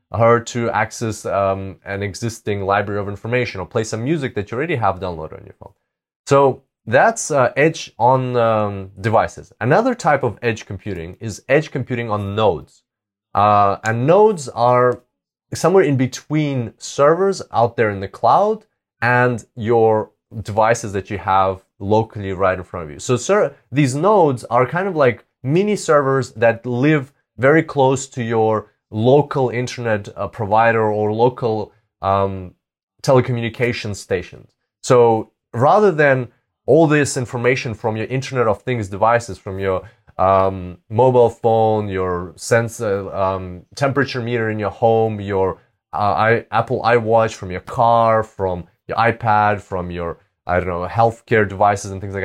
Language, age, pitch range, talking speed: English, 20-39, 100-125 Hz, 155 wpm